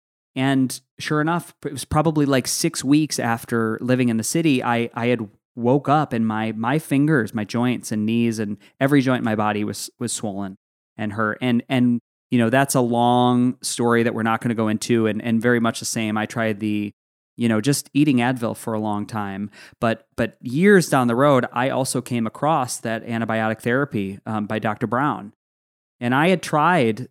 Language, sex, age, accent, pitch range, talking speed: English, male, 20-39, American, 110-130 Hz, 210 wpm